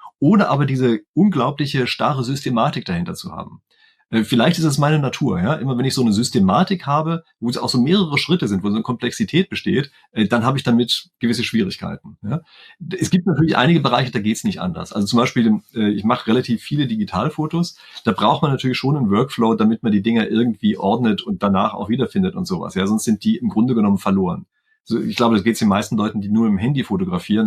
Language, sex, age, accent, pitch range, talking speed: German, male, 30-49, German, 115-180 Hz, 220 wpm